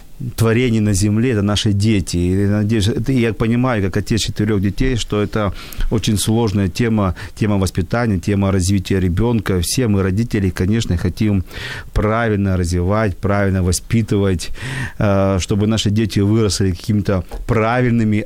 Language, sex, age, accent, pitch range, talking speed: Ukrainian, male, 40-59, native, 95-110 Hz, 130 wpm